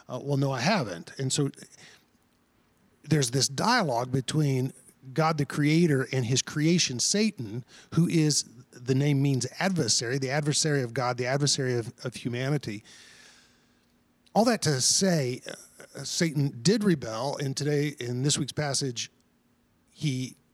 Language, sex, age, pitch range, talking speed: English, male, 40-59, 125-155 Hz, 140 wpm